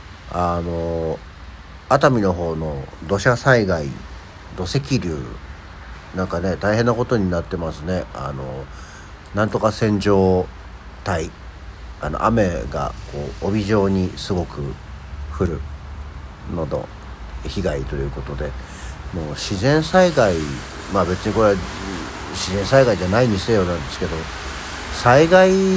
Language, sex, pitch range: Japanese, male, 75-120 Hz